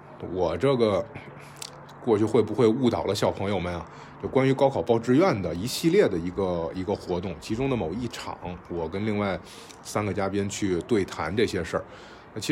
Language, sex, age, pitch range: Chinese, male, 20-39, 95-130 Hz